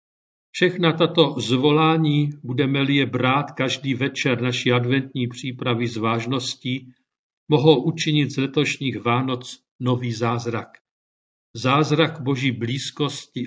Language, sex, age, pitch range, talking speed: Czech, male, 50-69, 125-150 Hz, 105 wpm